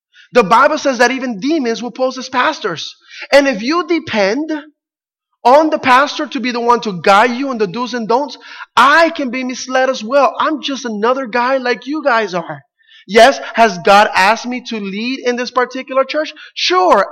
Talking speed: 195 wpm